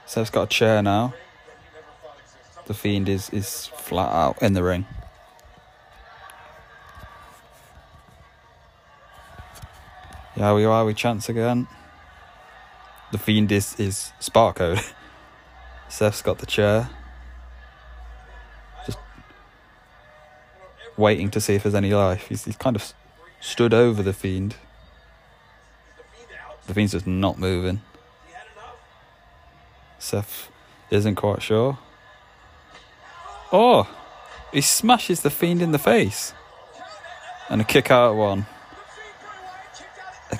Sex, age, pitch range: male, 20-39, 100-120 Hz